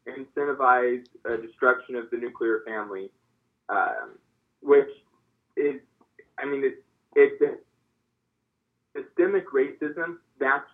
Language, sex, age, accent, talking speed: English, male, 20-39, American, 95 wpm